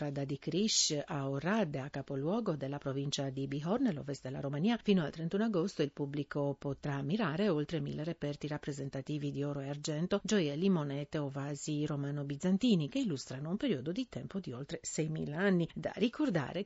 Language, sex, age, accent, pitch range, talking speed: Italian, female, 50-69, native, 145-210 Hz, 175 wpm